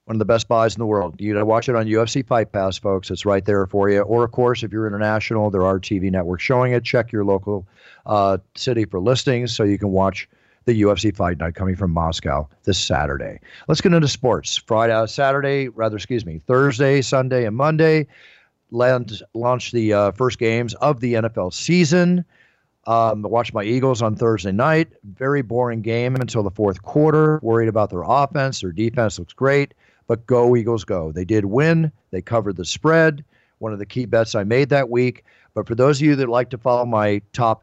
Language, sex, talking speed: English, male, 205 wpm